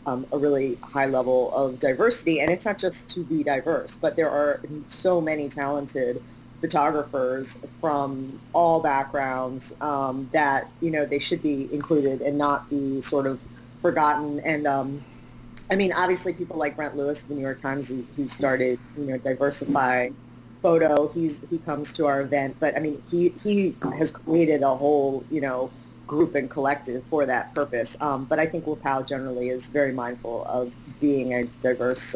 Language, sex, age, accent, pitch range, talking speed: English, female, 30-49, American, 135-170 Hz, 175 wpm